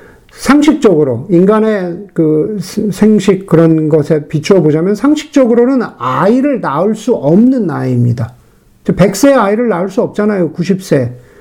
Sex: male